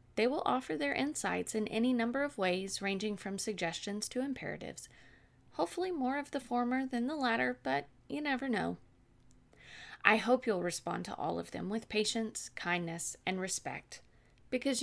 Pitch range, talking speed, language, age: 175-250 Hz, 165 wpm, English, 30-49